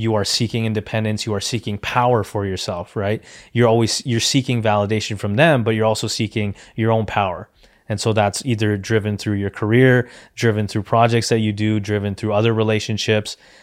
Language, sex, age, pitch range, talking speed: English, male, 20-39, 105-120 Hz, 190 wpm